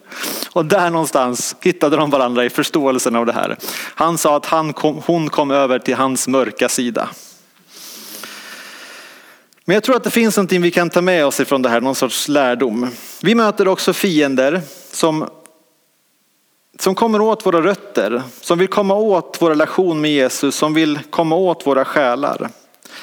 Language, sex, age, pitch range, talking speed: English, male, 30-49, 135-180 Hz, 170 wpm